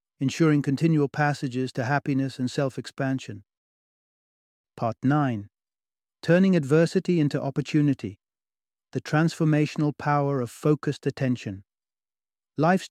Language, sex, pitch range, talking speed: English, male, 130-155 Hz, 95 wpm